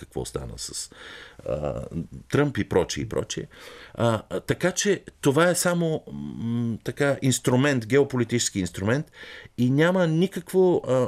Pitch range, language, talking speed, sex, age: 85-130 Hz, Bulgarian, 140 wpm, male, 50-69